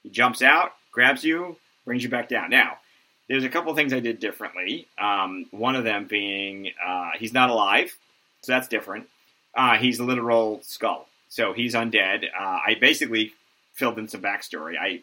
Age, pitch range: 30-49, 100-140 Hz